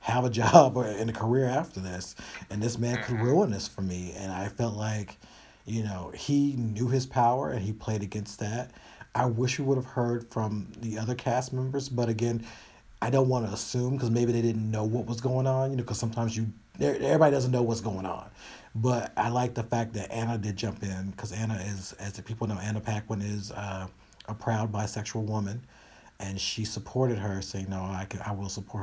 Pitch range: 100-120 Hz